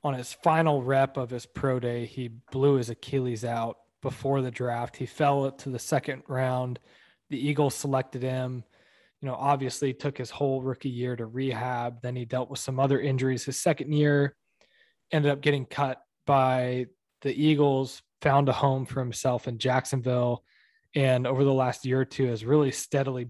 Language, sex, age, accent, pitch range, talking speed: English, male, 20-39, American, 125-145 Hz, 180 wpm